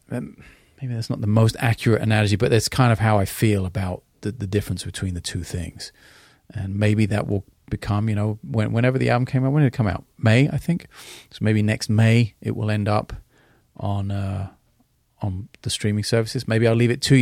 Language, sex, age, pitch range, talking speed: English, male, 30-49, 95-115 Hz, 220 wpm